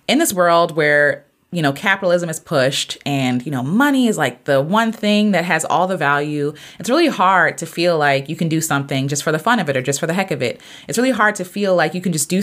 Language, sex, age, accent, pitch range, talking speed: English, female, 20-39, American, 150-185 Hz, 270 wpm